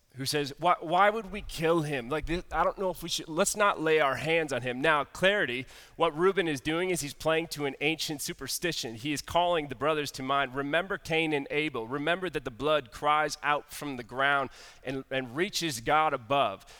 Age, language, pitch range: 30-49, English, 125-160 Hz